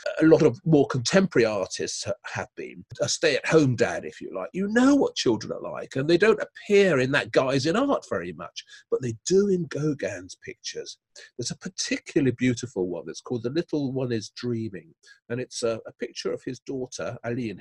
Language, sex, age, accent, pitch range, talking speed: English, male, 40-59, British, 115-190 Hz, 200 wpm